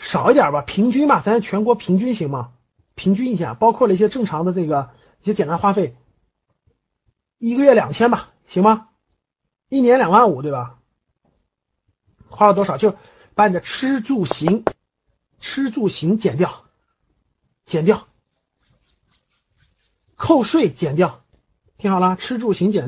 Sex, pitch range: male, 175-240 Hz